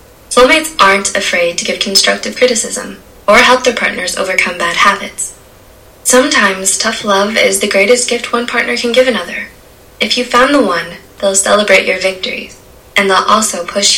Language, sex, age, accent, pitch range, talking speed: English, female, 10-29, American, 190-245 Hz, 170 wpm